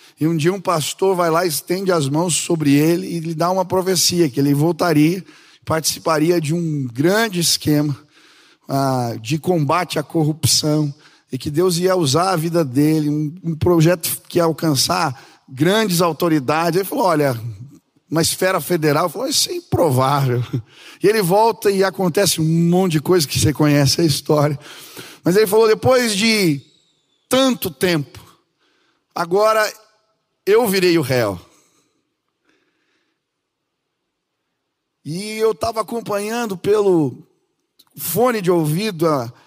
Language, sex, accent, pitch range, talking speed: Portuguese, male, Brazilian, 155-205 Hz, 140 wpm